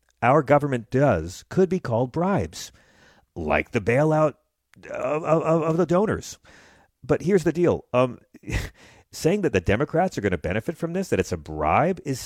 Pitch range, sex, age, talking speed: 95-150 Hz, male, 40-59, 170 wpm